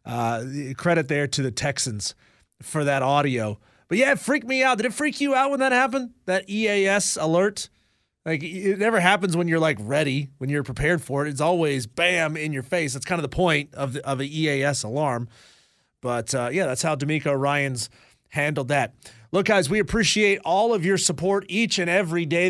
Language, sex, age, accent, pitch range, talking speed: English, male, 30-49, American, 145-185 Hz, 205 wpm